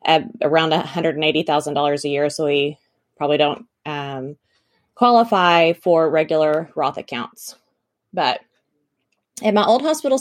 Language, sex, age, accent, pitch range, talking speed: English, female, 20-39, American, 160-205 Hz, 110 wpm